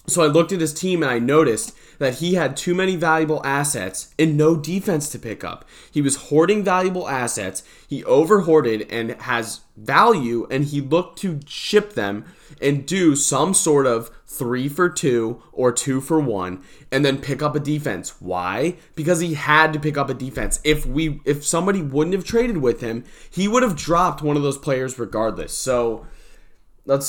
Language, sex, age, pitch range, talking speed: English, male, 20-39, 120-165 Hz, 190 wpm